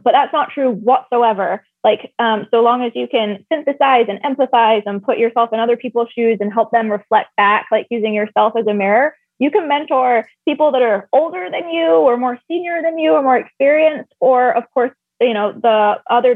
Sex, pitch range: female, 215-260 Hz